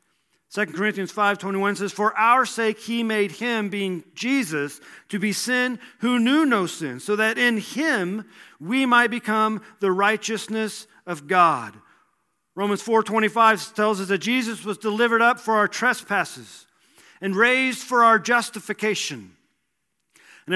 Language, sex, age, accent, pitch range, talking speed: English, male, 40-59, American, 205-245 Hz, 150 wpm